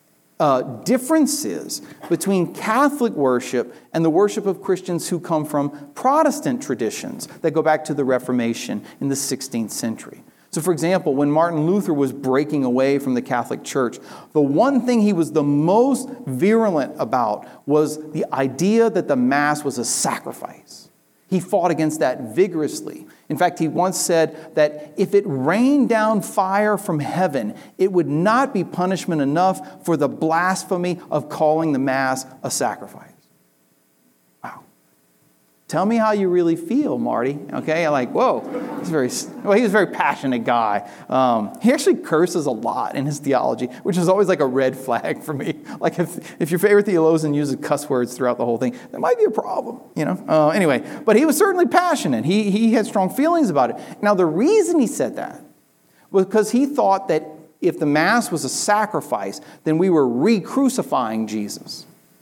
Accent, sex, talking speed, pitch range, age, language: American, male, 175 wpm, 140-210 Hz, 40-59, English